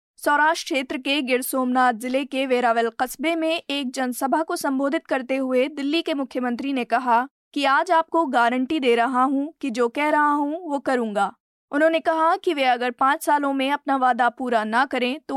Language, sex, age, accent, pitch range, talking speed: Hindi, female, 20-39, native, 250-295 Hz, 185 wpm